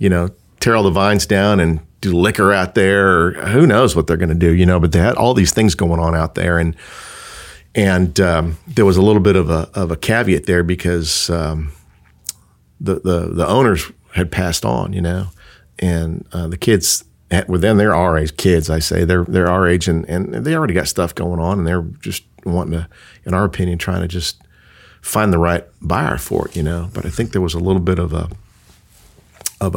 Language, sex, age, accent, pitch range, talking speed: English, male, 40-59, American, 85-95 Hz, 225 wpm